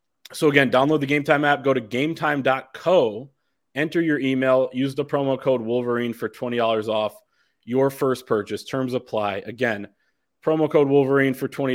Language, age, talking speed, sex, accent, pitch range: English, 20-39, 170 wpm, male, American, 115-135 Hz